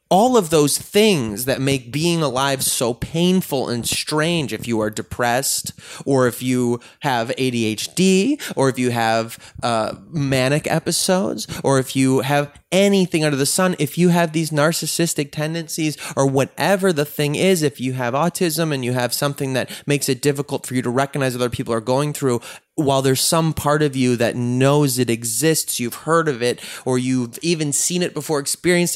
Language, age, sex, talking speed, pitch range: English, 20-39, male, 185 wpm, 125-160 Hz